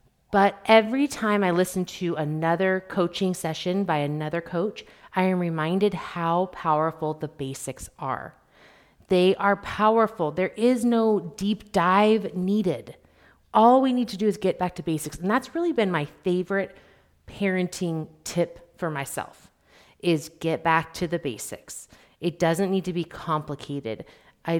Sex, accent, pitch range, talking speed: female, American, 160-200 Hz, 150 wpm